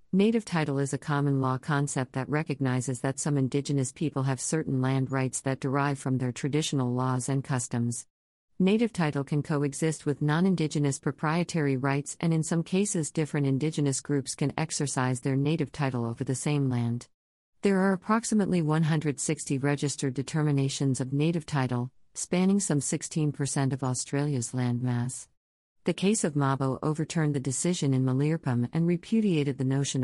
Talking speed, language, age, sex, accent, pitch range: 155 wpm, English, 50-69, female, American, 130-155 Hz